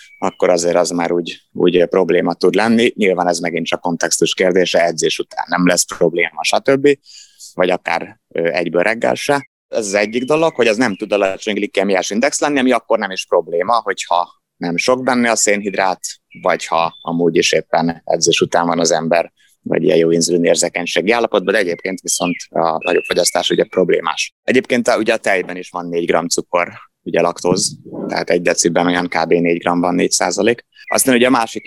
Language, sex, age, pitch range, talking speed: Hungarian, male, 20-39, 90-125 Hz, 190 wpm